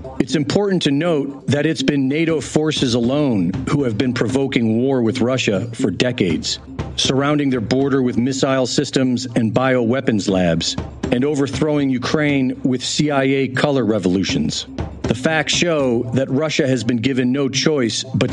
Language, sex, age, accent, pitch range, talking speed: English, male, 40-59, American, 125-145 Hz, 150 wpm